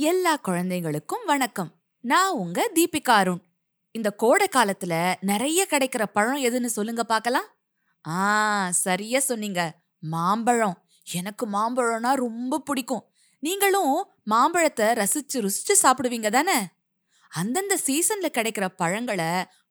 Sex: female